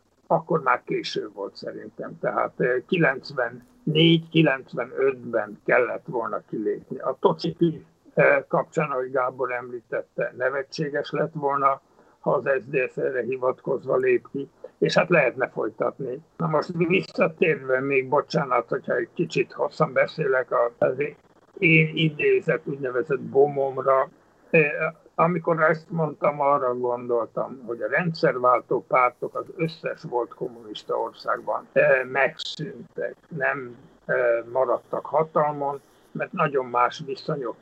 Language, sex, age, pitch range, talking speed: Hungarian, male, 60-79, 135-180 Hz, 110 wpm